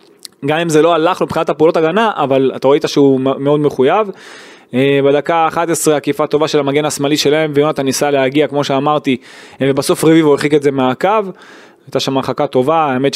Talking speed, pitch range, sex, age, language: 175 wpm, 135-165 Hz, male, 20-39, Hebrew